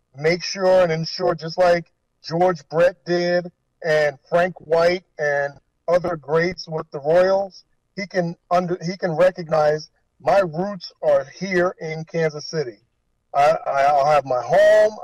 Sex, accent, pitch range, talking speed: male, American, 150-180 Hz, 145 wpm